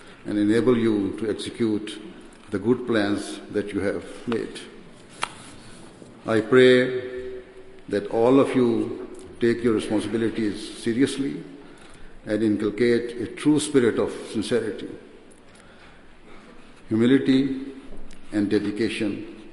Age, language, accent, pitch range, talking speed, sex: 60-79, English, Indian, 105-125 Hz, 100 wpm, male